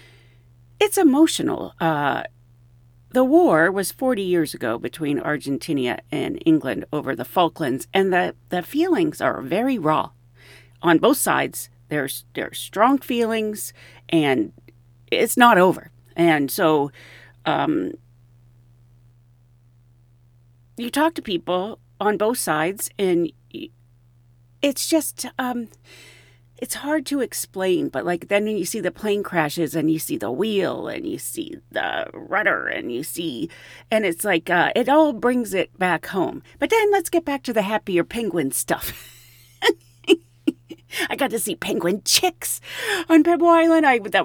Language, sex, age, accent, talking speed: English, female, 40-59, American, 140 wpm